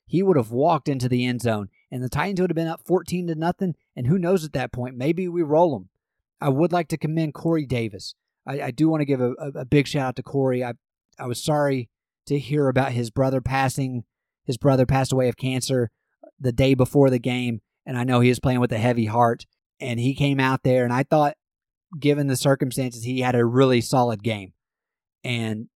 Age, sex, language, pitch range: 30-49, male, English, 125-160 Hz